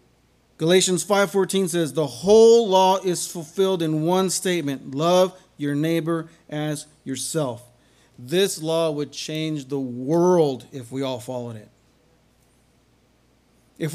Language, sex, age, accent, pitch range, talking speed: English, male, 30-49, American, 130-180 Hz, 120 wpm